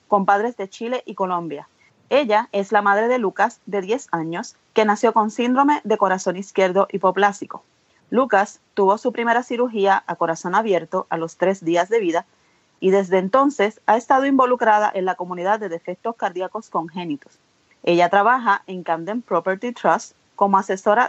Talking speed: 165 wpm